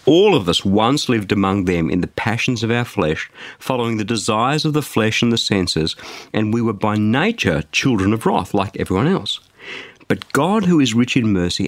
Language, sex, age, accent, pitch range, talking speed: English, male, 50-69, Australian, 100-140 Hz, 205 wpm